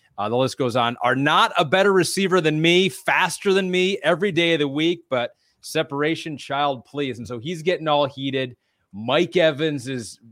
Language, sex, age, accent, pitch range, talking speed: English, male, 30-49, American, 125-155 Hz, 190 wpm